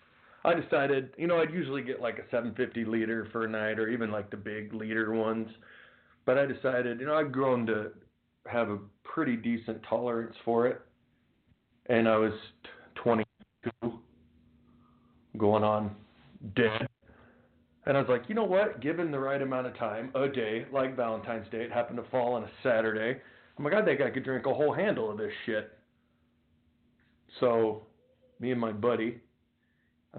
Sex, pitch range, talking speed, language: male, 110-130 Hz, 175 wpm, English